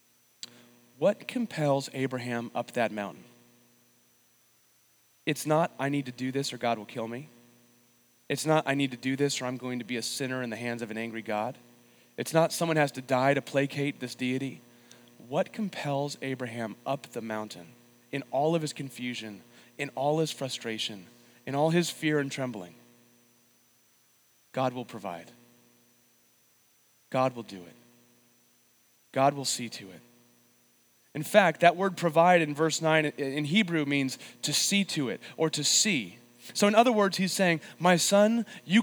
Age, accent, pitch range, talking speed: 30-49, American, 120-155 Hz, 170 wpm